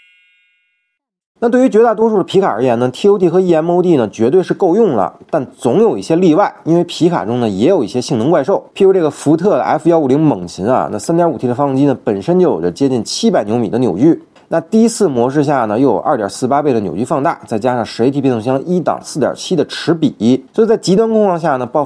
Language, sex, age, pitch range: Chinese, male, 30-49, 125-180 Hz